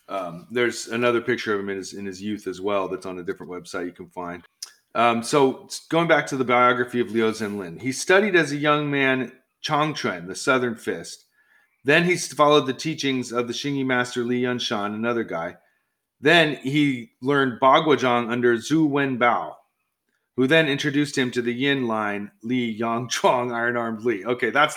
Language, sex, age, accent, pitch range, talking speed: English, male, 30-49, American, 120-145 Hz, 190 wpm